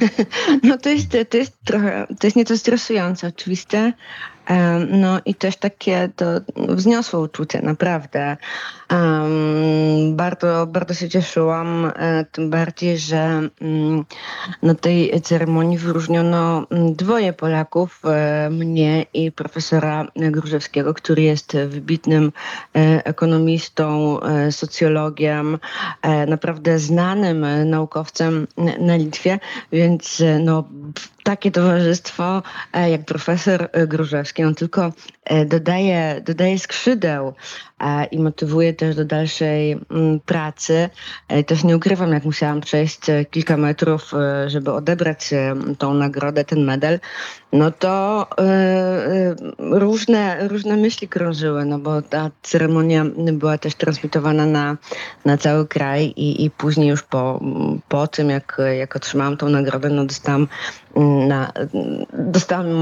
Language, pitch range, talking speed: Polish, 150-175 Hz, 105 wpm